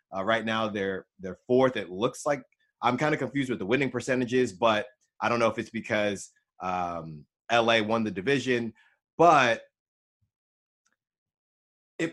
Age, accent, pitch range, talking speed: 30-49, American, 115-150 Hz, 155 wpm